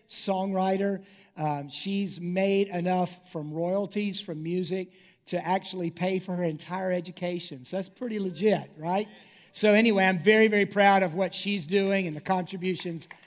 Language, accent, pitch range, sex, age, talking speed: English, American, 185-240 Hz, male, 50-69, 155 wpm